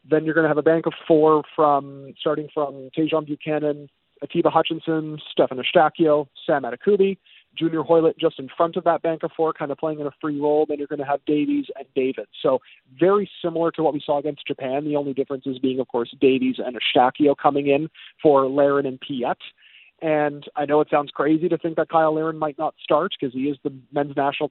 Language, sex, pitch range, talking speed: English, male, 145-165 Hz, 220 wpm